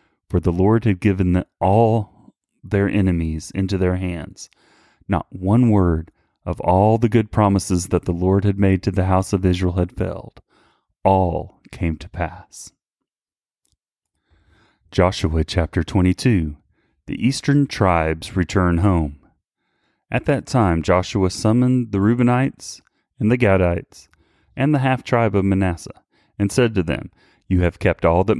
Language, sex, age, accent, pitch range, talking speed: English, male, 30-49, American, 90-105 Hz, 140 wpm